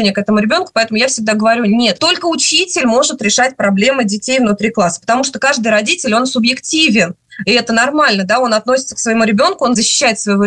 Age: 20-39